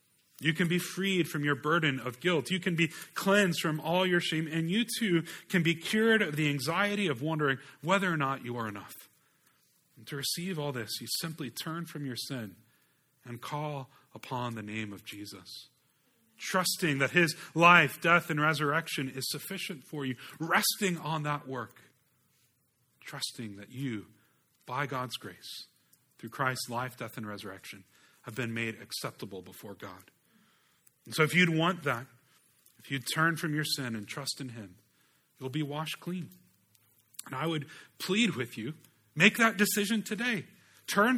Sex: male